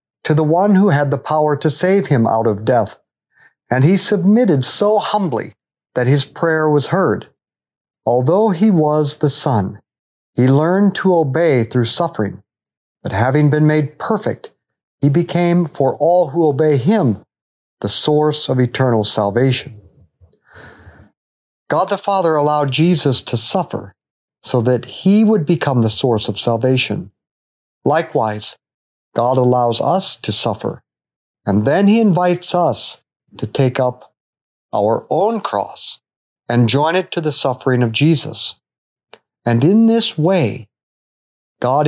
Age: 50-69